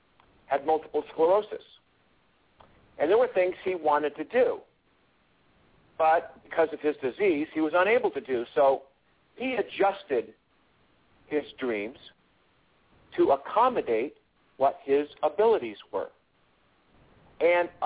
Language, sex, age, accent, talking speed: English, male, 50-69, American, 110 wpm